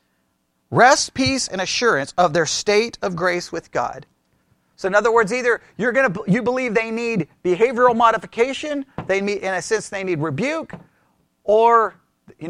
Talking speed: 170 wpm